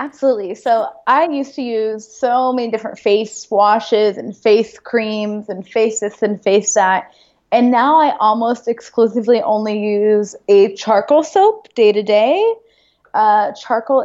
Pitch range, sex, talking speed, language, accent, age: 205-255 Hz, female, 150 wpm, English, American, 20-39